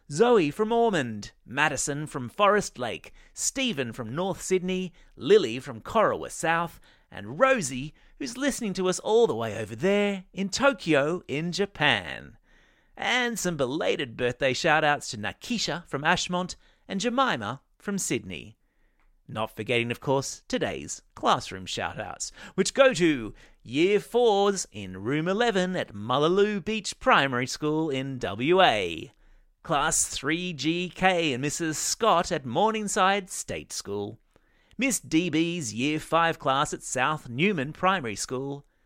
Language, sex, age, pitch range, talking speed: English, male, 30-49, 135-200 Hz, 130 wpm